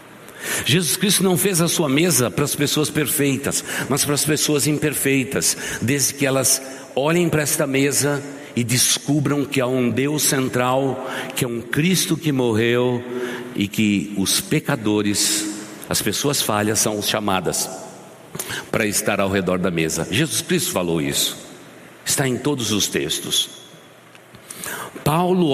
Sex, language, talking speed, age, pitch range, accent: male, Portuguese, 145 wpm, 60-79, 115-145 Hz, Brazilian